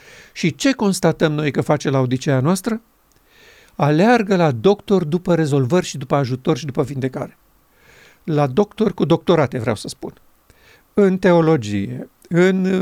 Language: Romanian